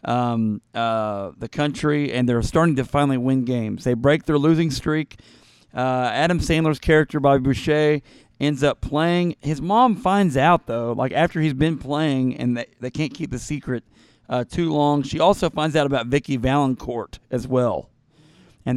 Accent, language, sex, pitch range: American, English, male, 120-150 Hz